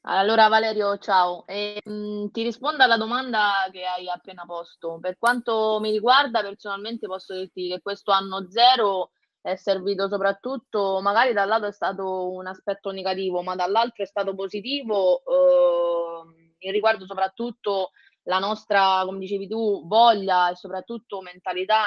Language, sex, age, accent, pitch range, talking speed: Italian, female, 20-39, native, 180-210 Hz, 150 wpm